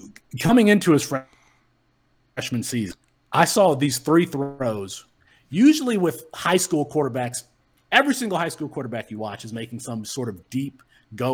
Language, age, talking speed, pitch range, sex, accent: English, 30-49, 155 wpm, 120-150 Hz, male, American